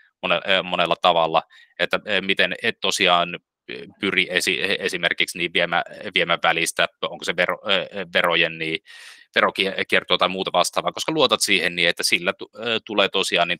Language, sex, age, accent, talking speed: Finnish, male, 20-39, native, 140 wpm